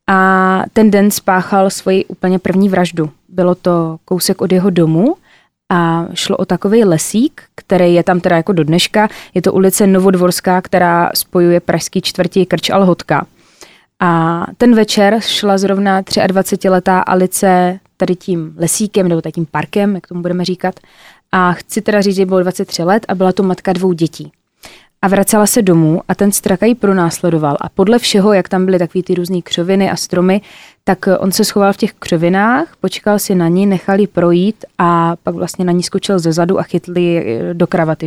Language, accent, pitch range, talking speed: Czech, native, 175-200 Hz, 180 wpm